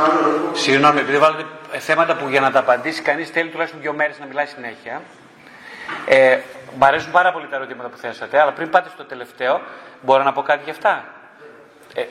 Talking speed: 185 wpm